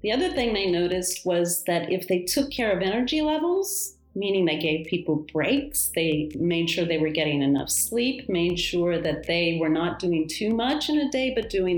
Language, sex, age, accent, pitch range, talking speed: Italian, female, 40-59, American, 165-230 Hz, 210 wpm